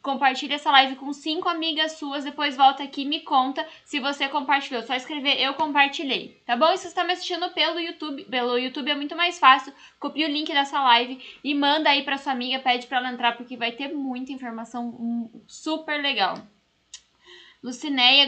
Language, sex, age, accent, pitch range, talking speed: Portuguese, female, 10-29, Brazilian, 250-305 Hz, 195 wpm